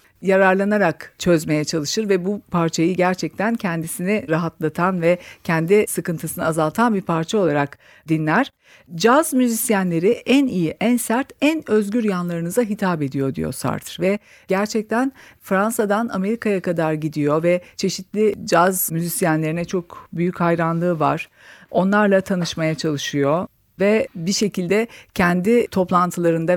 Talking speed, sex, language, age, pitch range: 115 wpm, female, Turkish, 50-69, 170-225 Hz